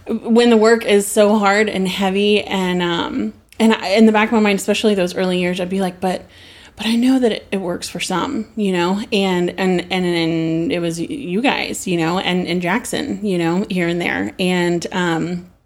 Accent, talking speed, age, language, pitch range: American, 215 wpm, 30-49, English, 180-215 Hz